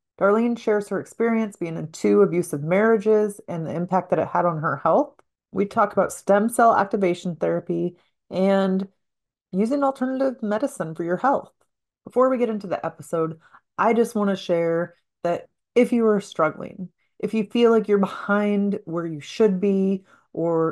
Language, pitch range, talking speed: English, 180-225 Hz, 170 wpm